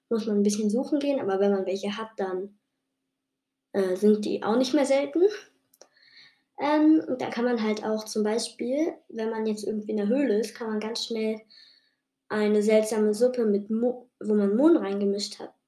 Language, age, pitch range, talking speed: German, 20-39, 210-255 Hz, 190 wpm